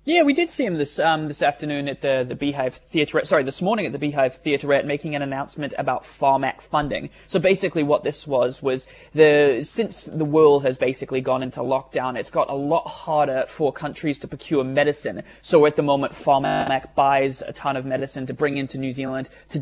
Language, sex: English, male